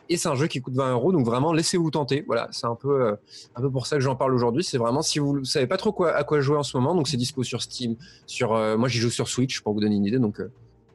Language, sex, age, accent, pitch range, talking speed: French, male, 20-39, French, 110-145 Hz, 325 wpm